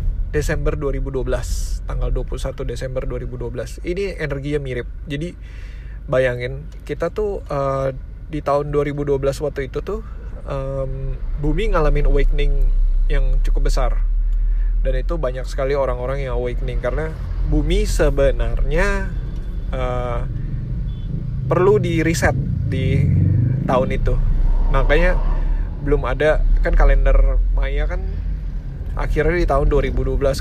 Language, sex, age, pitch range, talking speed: Indonesian, male, 20-39, 85-140 Hz, 105 wpm